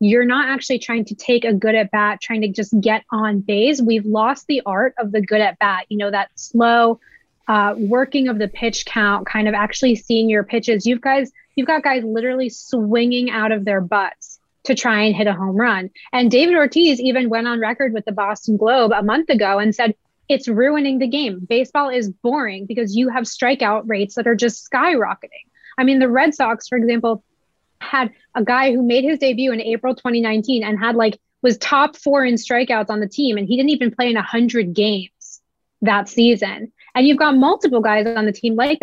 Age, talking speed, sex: 20-39, 215 wpm, female